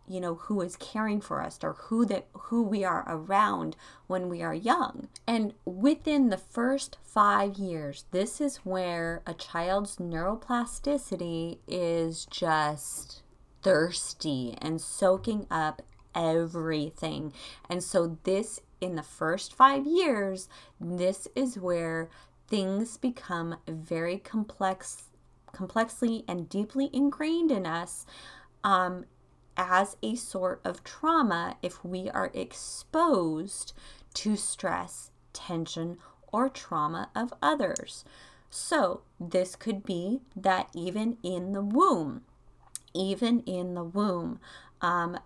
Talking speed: 120 wpm